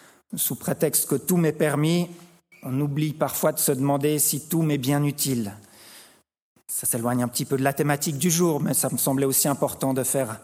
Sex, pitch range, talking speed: male, 140-175 Hz, 200 wpm